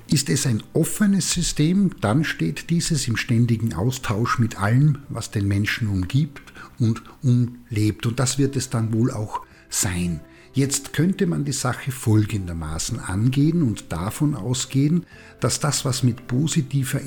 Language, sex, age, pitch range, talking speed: German, male, 50-69, 105-135 Hz, 150 wpm